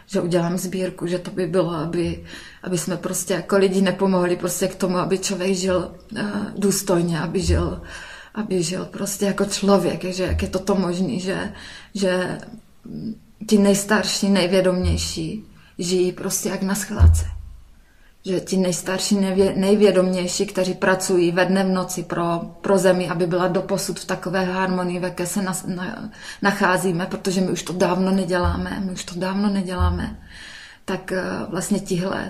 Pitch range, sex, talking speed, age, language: 175-190 Hz, female, 150 wpm, 20-39, Slovak